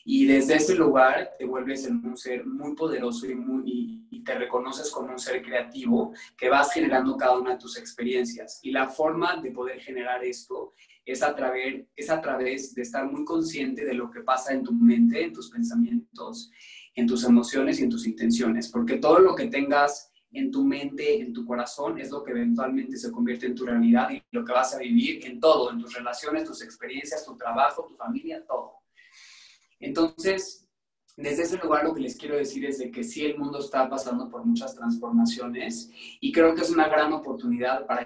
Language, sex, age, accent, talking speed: Spanish, male, 20-39, Mexican, 200 wpm